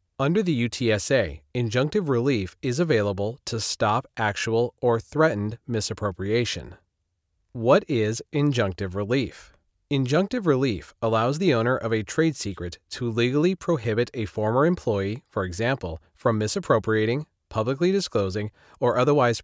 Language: Chinese